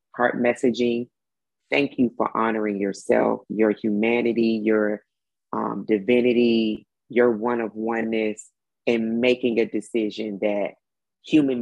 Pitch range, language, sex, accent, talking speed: 115-180 Hz, English, female, American, 115 wpm